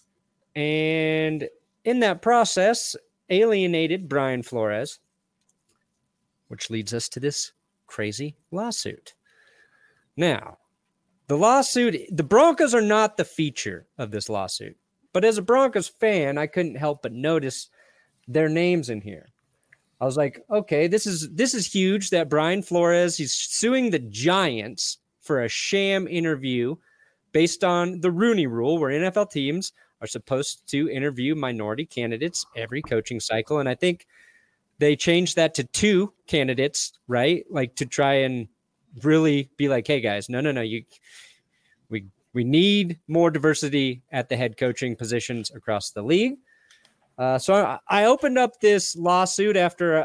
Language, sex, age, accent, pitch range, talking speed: English, male, 30-49, American, 135-205 Hz, 145 wpm